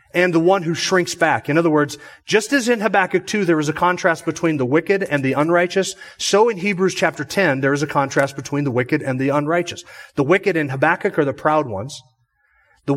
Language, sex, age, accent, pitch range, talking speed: English, male, 30-49, American, 145-190 Hz, 220 wpm